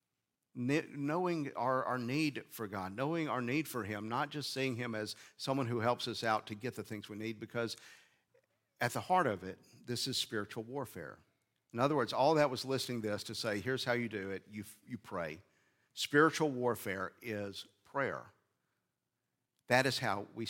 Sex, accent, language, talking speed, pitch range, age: male, American, English, 185 wpm, 105-130 Hz, 50-69